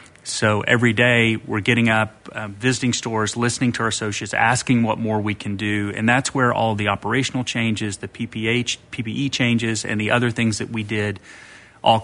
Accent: American